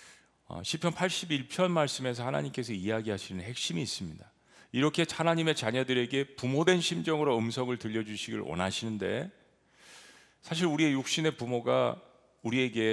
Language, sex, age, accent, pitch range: Korean, male, 40-59, native, 110-150 Hz